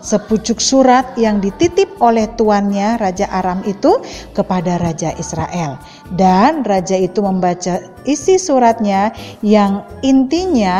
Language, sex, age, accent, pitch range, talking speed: Indonesian, female, 50-69, native, 190-275 Hz, 110 wpm